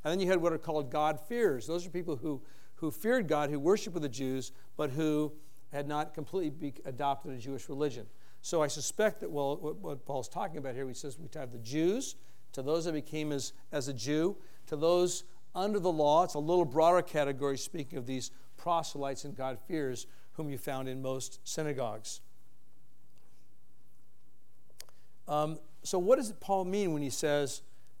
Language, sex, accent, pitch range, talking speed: English, male, American, 140-180 Hz, 180 wpm